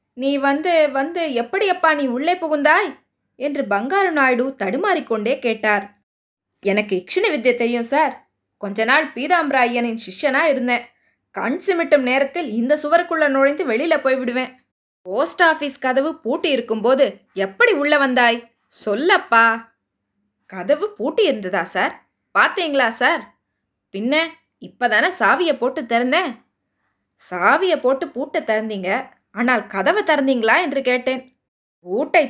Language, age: Tamil, 20-39